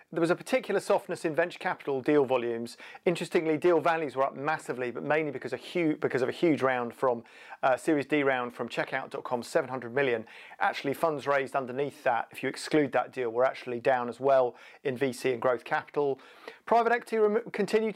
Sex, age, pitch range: male, 40-59, 130-175 Hz